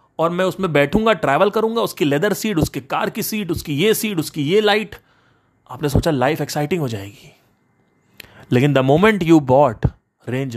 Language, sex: Hindi, male